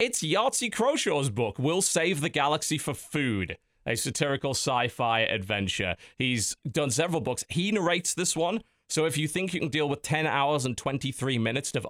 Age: 30-49